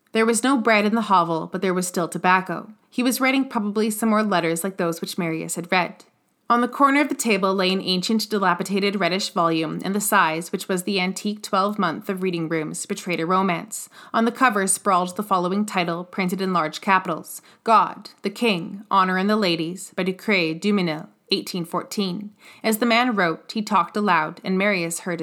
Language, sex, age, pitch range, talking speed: English, female, 20-39, 180-220 Hz, 195 wpm